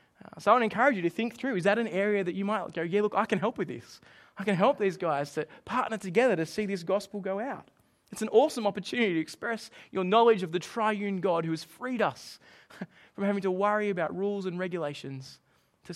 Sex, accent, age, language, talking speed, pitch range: male, Australian, 20-39, English, 235 wpm, 160-205 Hz